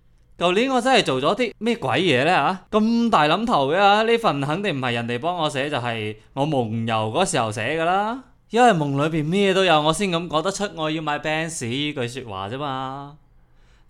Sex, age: male, 20-39